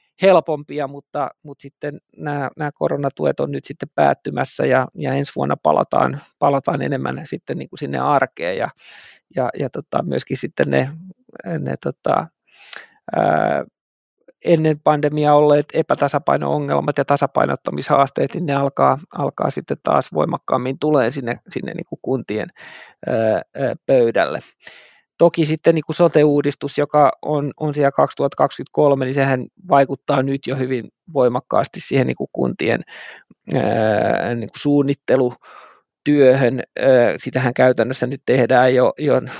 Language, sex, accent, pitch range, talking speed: Finnish, male, native, 130-150 Hz, 135 wpm